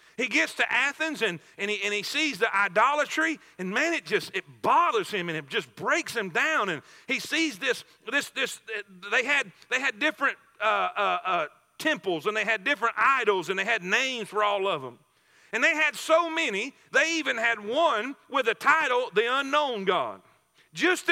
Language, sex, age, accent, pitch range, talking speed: English, male, 40-59, American, 215-310 Hz, 195 wpm